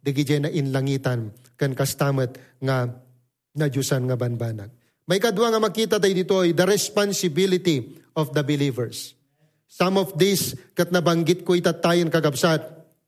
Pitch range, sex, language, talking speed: 160-210 Hz, male, English, 100 wpm